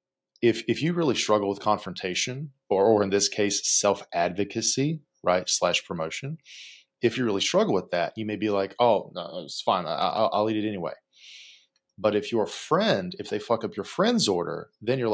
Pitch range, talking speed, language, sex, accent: 95-115 Hz, 195 wpm, English, male, American